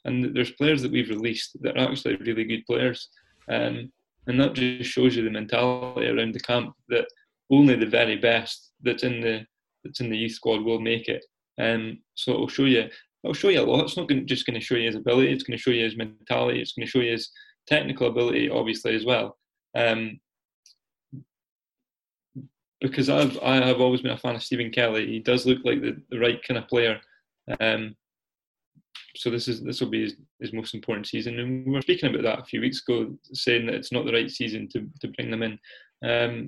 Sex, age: male, 20-39